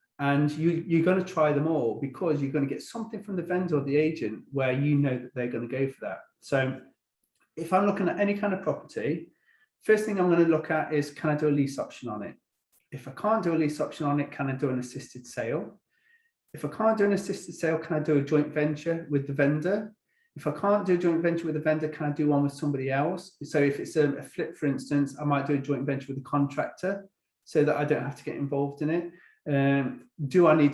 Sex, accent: male, British